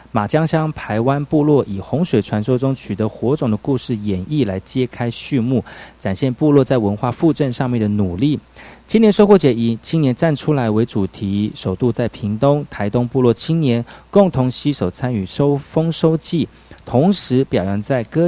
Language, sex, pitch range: Chinese, male, 105-145 Hz